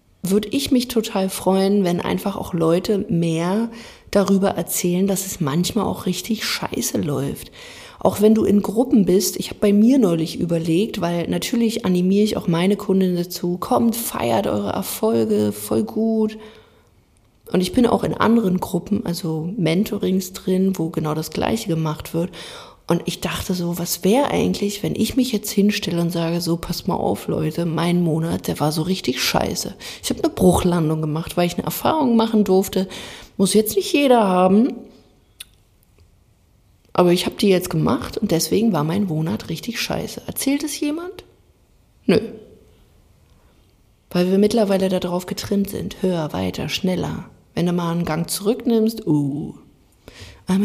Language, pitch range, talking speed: German, 165-215 Hz, 165 wpm